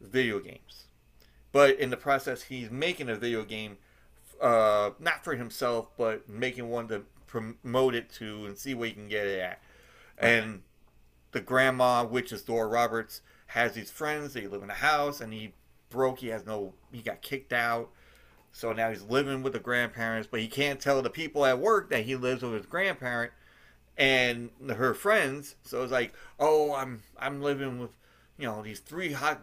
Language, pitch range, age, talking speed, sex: English, 110-135 Hz, 30-49, 190 wpm, male